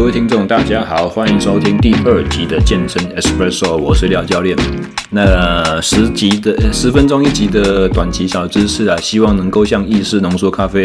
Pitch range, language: 90-105 Hz, Chinese